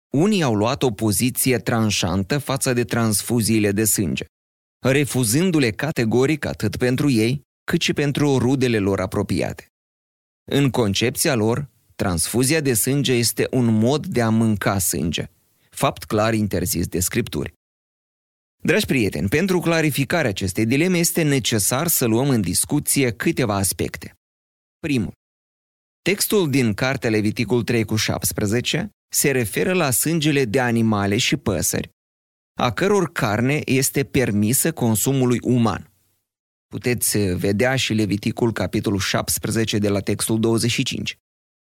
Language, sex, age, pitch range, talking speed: Romanian, male, 30-49, 105-135 Hz, 125 wpm